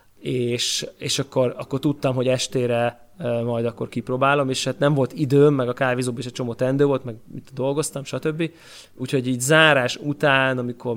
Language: Hungarian